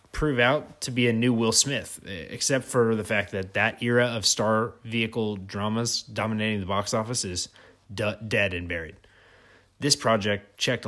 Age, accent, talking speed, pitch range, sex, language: 20-39, American, 165 wpm, 95-120 Hz, male, English